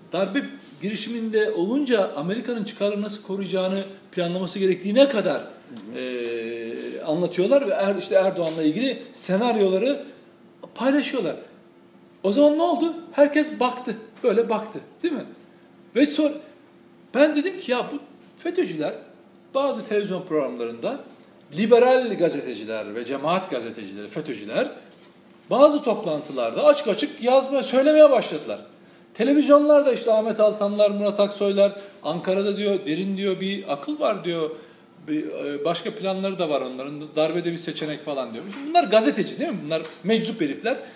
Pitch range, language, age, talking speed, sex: 170-275 Hz, Turkish, 40-59, 125 wpm, male